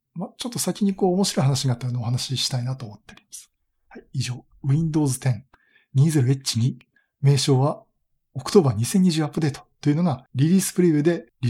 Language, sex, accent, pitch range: Japanese, male, native, 125-170 Hz